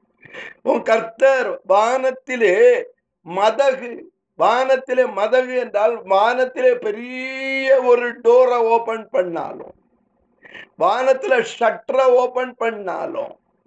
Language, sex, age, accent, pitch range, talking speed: Tamil, male, 50-69, native, 230-280 Hz, 55 wpm